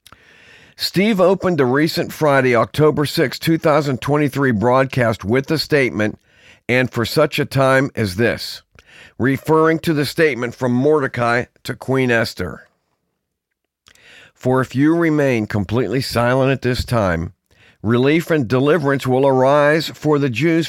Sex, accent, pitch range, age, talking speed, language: male, American, 110-145 Hz, 50-69, 130 wpm, English